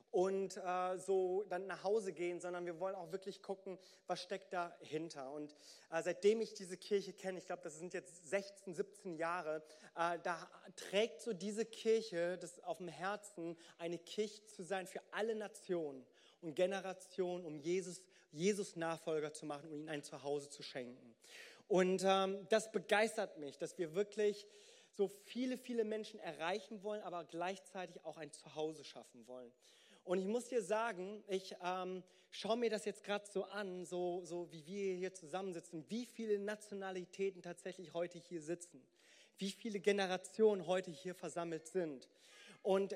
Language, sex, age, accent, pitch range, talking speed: German, male, 30-49, German, 175-205 Hz, 165 wpm